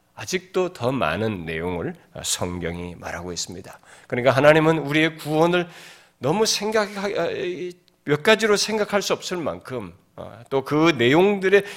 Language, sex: Korean, male